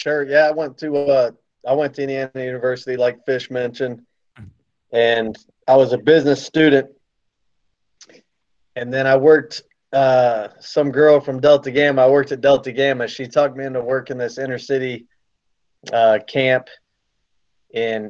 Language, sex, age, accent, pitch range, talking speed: English, male, 30-49, American, 110-135 Hz, 155 wpm